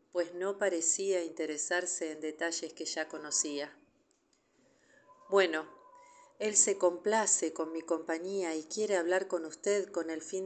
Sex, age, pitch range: female, 40-59, 160-210 Hz